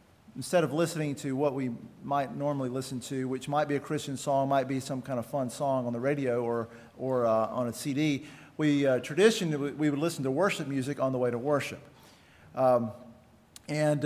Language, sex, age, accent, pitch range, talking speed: English, male, 40-59, American, 135-165 Hz, 205 wpm